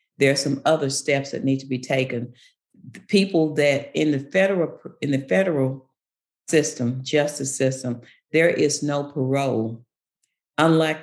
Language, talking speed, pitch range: English, 145 wpm, 130-165 Hz